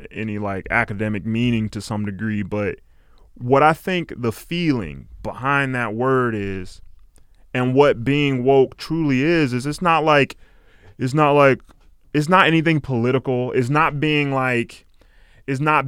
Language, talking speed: English, 150 wpm